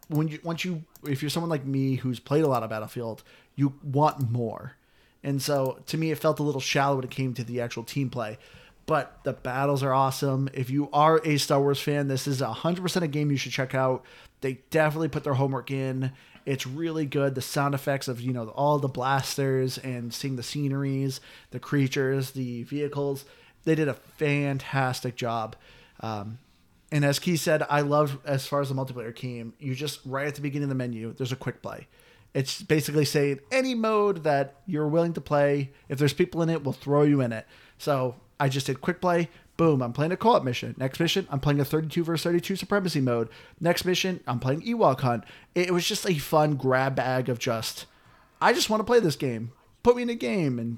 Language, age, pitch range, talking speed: English, 30-49, 130-155 Hz, 220 wpm